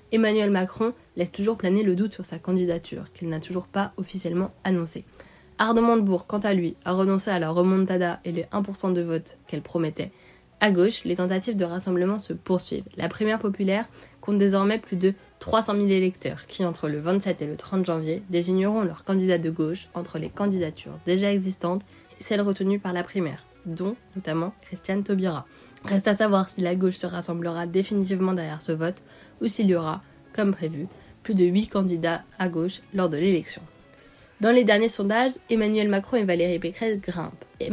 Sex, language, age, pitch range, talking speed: female, French, 20-39, 170-200 Hz, 185 wpm